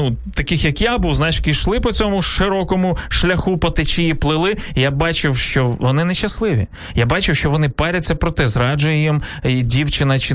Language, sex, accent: Ukrainian, male, native